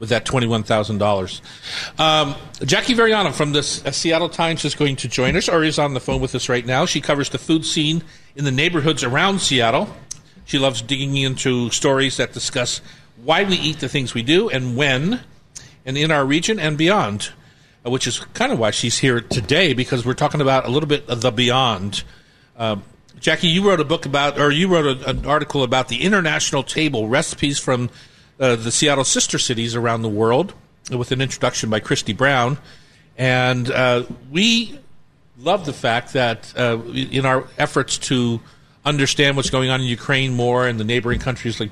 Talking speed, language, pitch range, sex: 195 wpm, English, 125-155 Hz, male